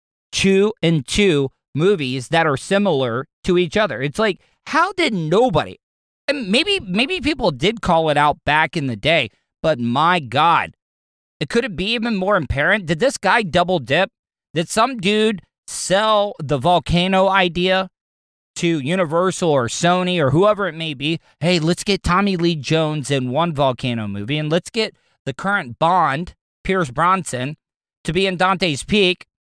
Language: English